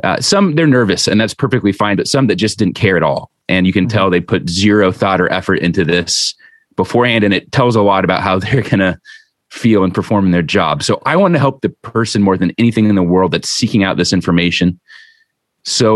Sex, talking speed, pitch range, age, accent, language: male, 240 wpm, 100-135 Hz, 30-49, American, English